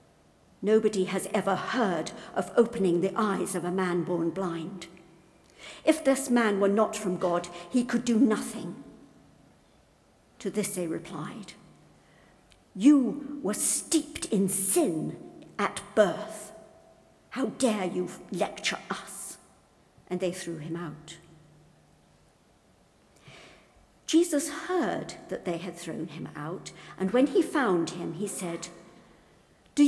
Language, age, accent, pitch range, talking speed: English, 60-79, British, 175-245 Hz, 125 wpm